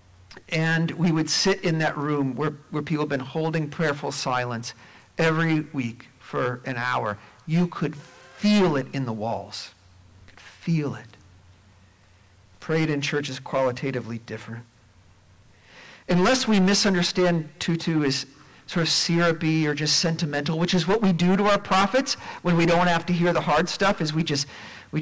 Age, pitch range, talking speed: 50-69, 110-170 Hz, 165 wpm